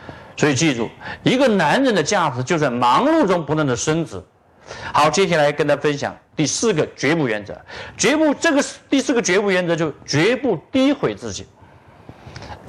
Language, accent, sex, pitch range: Chinese, native, male, 145-235 Hz